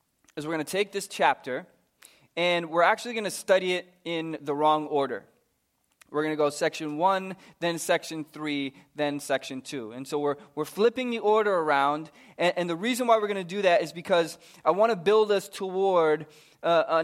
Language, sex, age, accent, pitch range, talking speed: English, male, 20-39, American, 150-195 Hz, 195 wpm